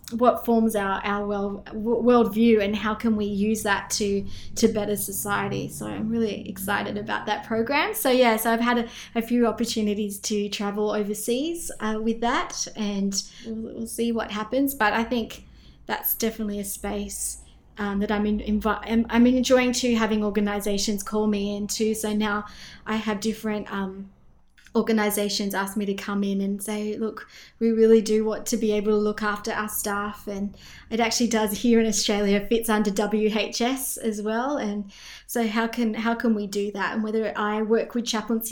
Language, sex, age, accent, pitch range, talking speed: English, female, 20-39, Australian, 205-230 Hz, 185 wpm